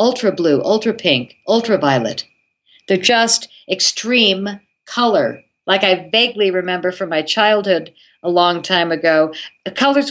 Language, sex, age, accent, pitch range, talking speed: English, female, 50-69, American, 160-205 Hz, 130 wpm